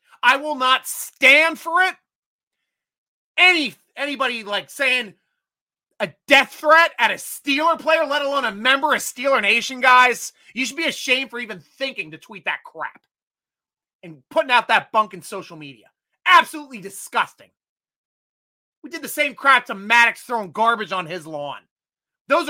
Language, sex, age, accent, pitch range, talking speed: English, male, 30-49, American, 190-280 Hz, 155 wpm